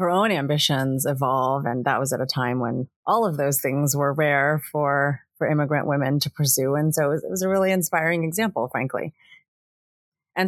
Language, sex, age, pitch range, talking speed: English, female, 30-49, 135-155 Hz, 200 wpm